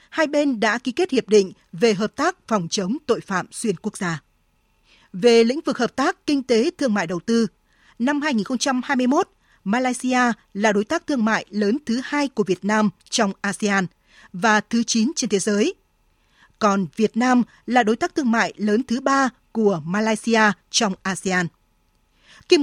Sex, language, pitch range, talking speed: female, Vietnamese, 200-245 Hz, 175 wpm